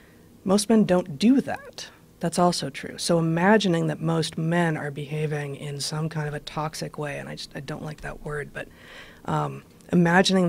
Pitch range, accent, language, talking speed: 150-175 Hz, American, English, 185 wpm